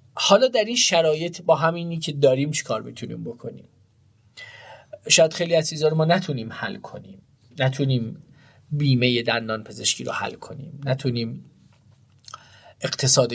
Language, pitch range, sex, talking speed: Persian, 125-165 Hz, male, 125 wpm